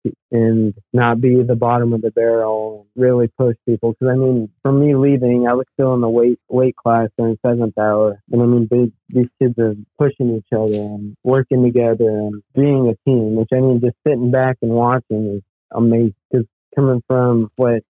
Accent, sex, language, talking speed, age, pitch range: American, male, English, 195 wpm, 20-39, 110-120 Hz